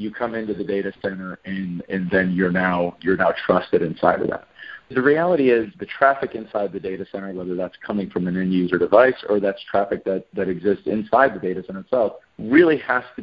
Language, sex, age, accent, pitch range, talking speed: English, male, 40-59, American, 95-110 Hz, 215 wpm